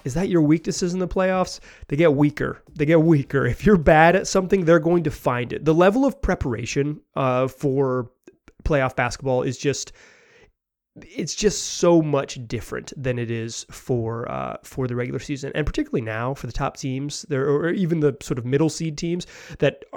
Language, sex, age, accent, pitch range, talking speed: English, male, 30-49, American, 130-165 Hz, 190 wpm